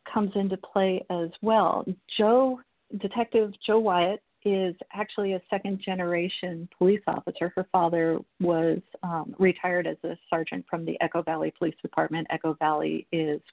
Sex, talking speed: female, 140 wpm